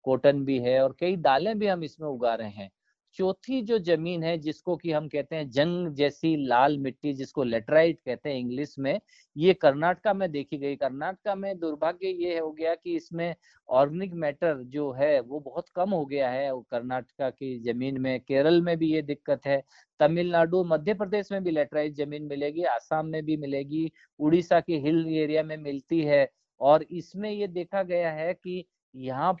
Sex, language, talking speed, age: male, Punjabi, 185 wpm, 50-69